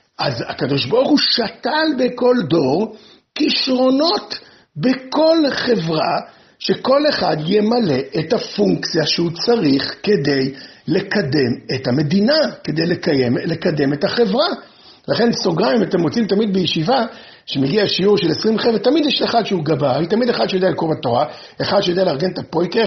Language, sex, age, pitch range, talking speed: Hebrew, male, 50-69, 170-260 Hz, 140 wpm